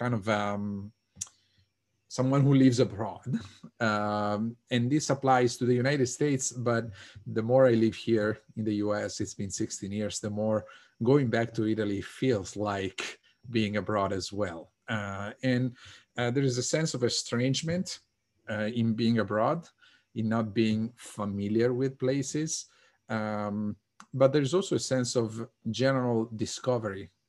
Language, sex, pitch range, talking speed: English, male, 105-130 Hz, 150 wpm